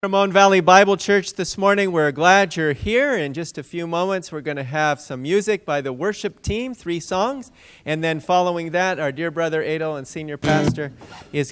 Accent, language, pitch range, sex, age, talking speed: American, English, 150-195 Hz, male, 40-59, 205 wpm